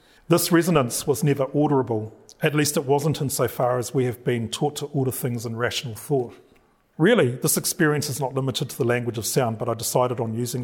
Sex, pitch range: male, 120-145 Hz